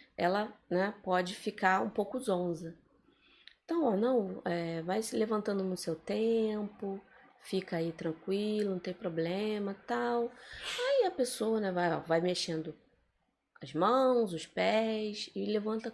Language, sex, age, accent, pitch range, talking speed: Portuguese, female, 20-39, Brazilian, 170-230 Hz, 145 wpm